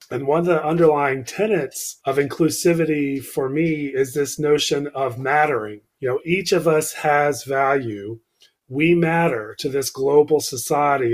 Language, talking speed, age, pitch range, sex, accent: English, 150 wpm, 40-59, 125-155 Hz, male, American